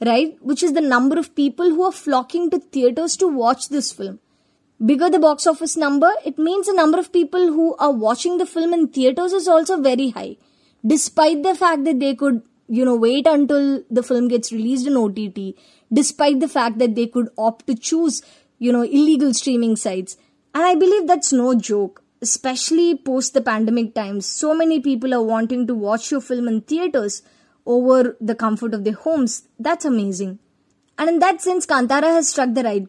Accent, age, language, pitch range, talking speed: Indian, 20-39, English, 235-315 Hz, 195 wpm